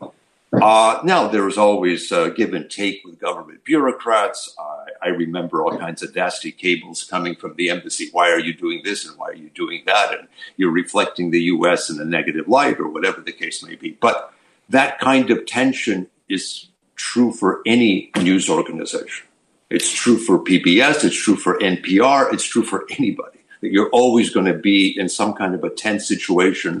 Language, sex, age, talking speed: English, male, 50-69, 195 wpm